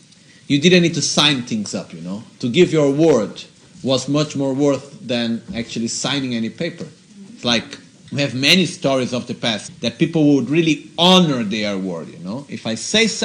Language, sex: Italian, male